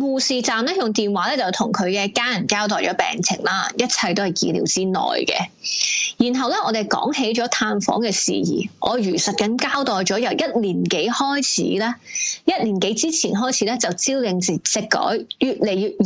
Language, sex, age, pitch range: Chinese, female, 20-39, 210-320 Hz